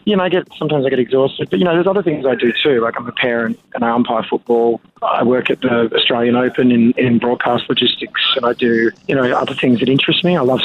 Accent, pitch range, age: Australian, 120-140 Hz, 20-39